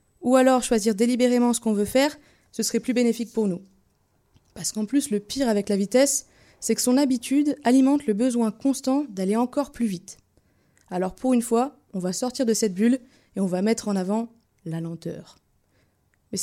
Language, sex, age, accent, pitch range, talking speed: French, female, 20-39, French, 210-255 Hz, 195 wpm